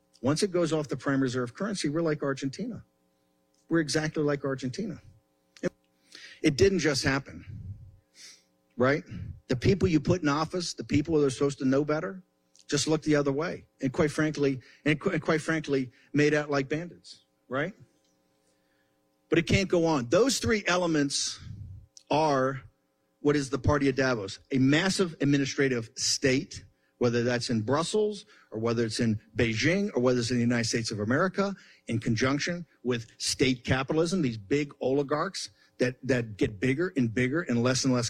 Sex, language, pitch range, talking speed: male, English, 115-155 Hz, 160 wpm